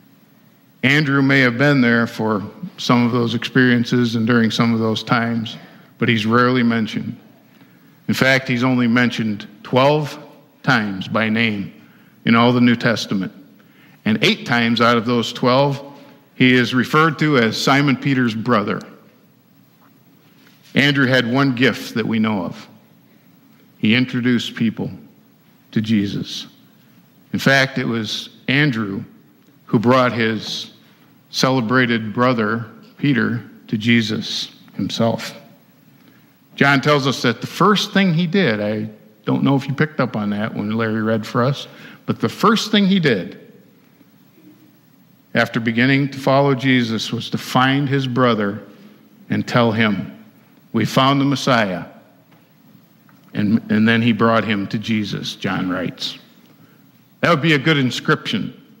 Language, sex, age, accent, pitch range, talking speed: English, male, 50-69, American, 115-140 Hz, 140 wpm